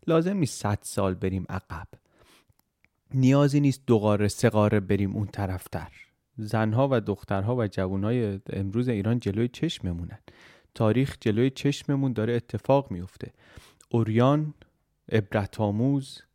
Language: Persian